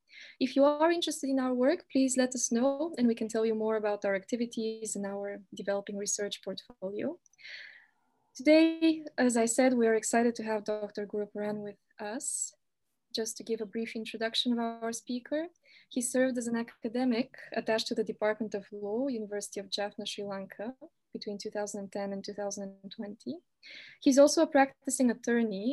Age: 20-39